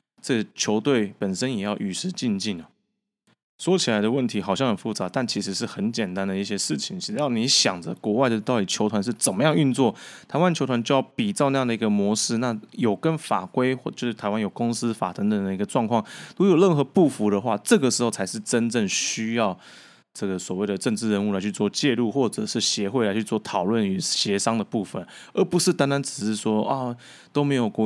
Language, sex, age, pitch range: Chinese, male, 20-39, 105-135 Hz